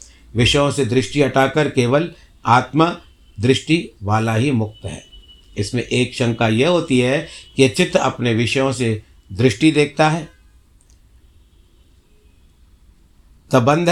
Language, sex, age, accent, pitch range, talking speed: Hindi, male, 60-79, native, 90-145 Hz, 110 wpm